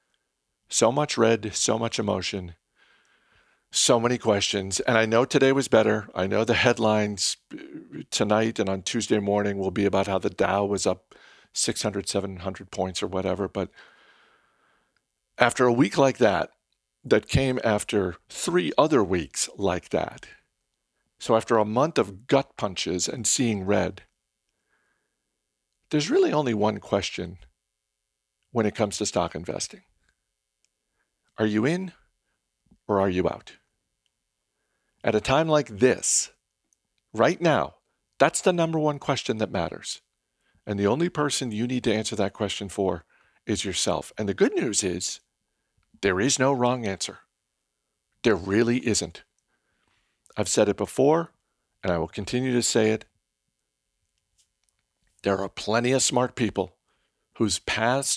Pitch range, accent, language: 95-125 Hz, American, English